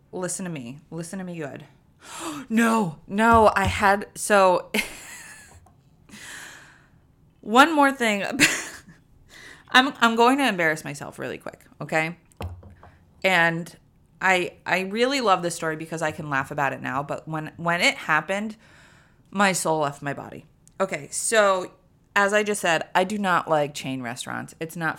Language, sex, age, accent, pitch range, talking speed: English, female, 20-39, American, 145-180 Hz, 150 wpm